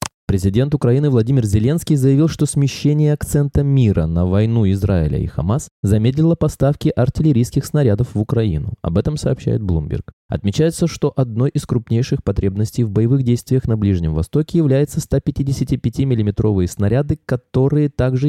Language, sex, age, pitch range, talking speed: Russian, male, 20-39, 105-150 Hz, 140 wpm